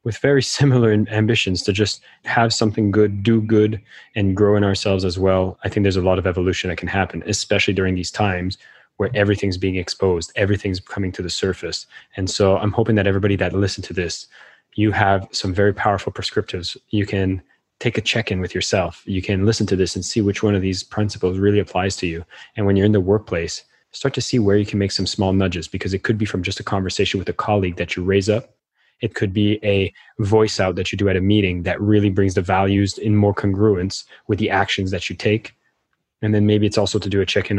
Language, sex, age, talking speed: English, male, 20-39, 230 wpm